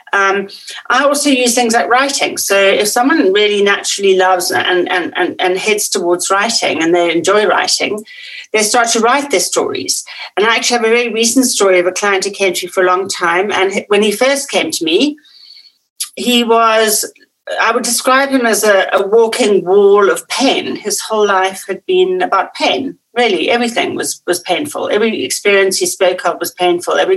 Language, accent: English, British